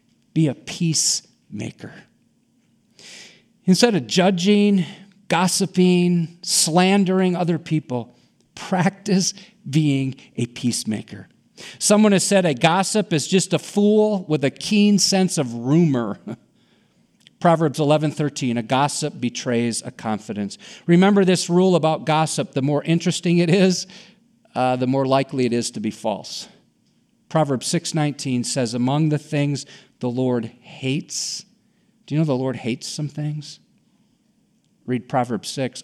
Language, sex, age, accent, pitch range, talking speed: English, male, 50-69, American, 125-195 Hz, 125 wpm